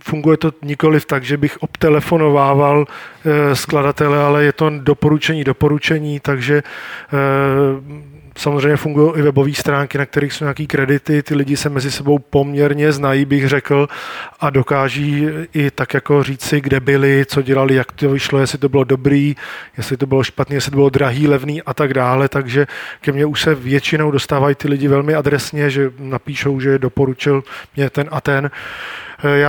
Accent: native